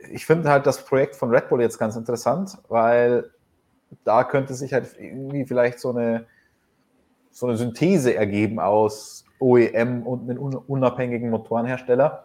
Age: 20-39